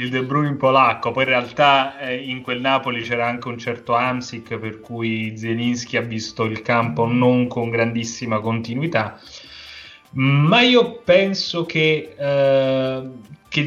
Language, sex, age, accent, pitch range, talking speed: Italian, male, 30-49, native, 115-135 Hz, 145 wpm